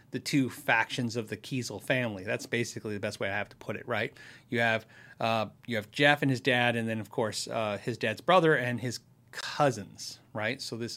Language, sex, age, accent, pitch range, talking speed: English, male, 30-49, American, 120-155 Hz, 225 wpm